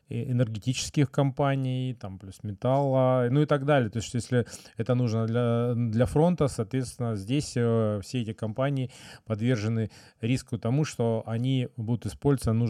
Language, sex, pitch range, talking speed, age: Russian, male, 115-130 Hz, 135 wpm, 20-39